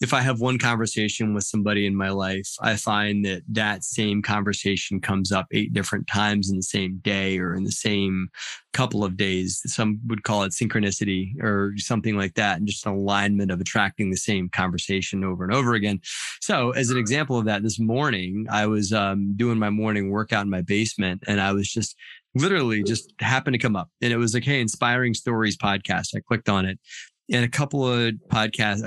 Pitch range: 100-115 Hz